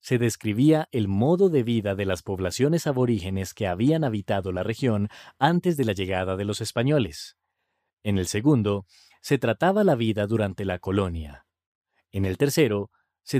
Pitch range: 95-130 Hz